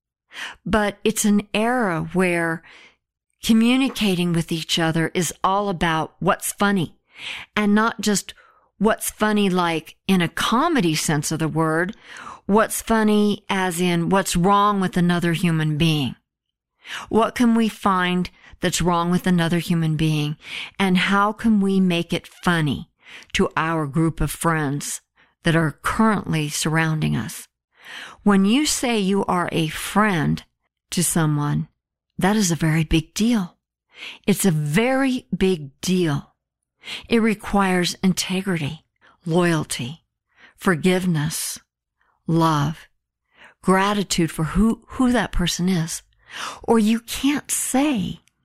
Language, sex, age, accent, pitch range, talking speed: English, female, 50-69, American, 165-220 Hz, 125 wpm